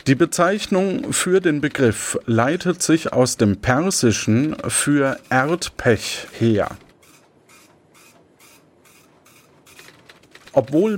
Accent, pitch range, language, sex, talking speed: German, 110-170 Hz, German, male, 75 wpm